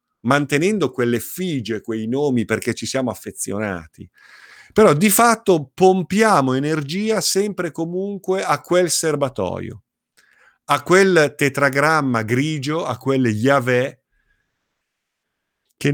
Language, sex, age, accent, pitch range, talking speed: Italian, male, 50-69, native, 100-140 Hz, 105 wpm